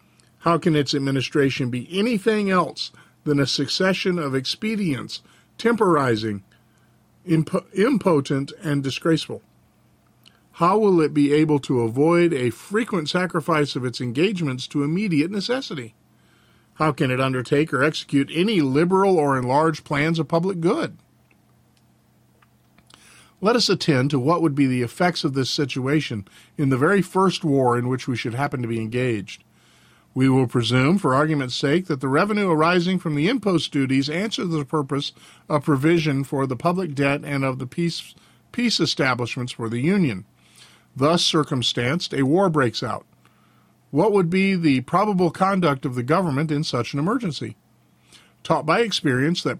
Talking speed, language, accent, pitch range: 150 wpm, English, American, 135-175 Hz